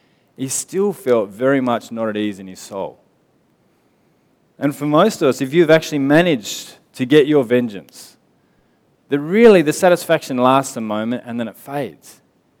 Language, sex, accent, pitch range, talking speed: English, male, Australian, 125-160 Hz, 165 wpm